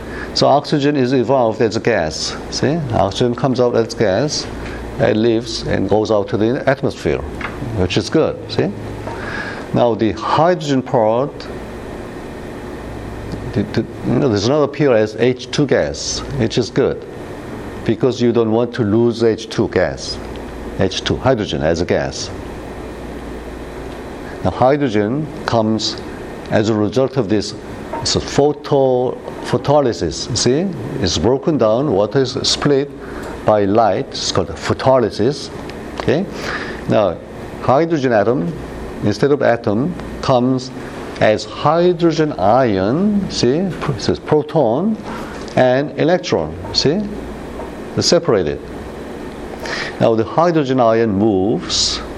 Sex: male